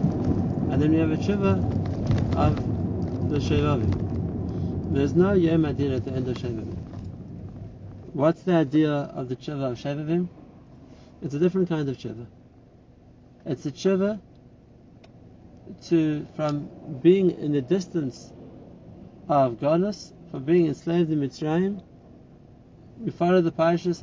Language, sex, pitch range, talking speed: English, male, 115-165 Hz, 125 wpm